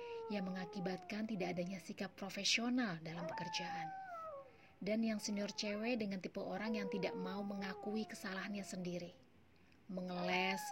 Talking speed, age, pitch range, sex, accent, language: 125 wpm, 30-49, 185-260 Hz, female, native, Indonesian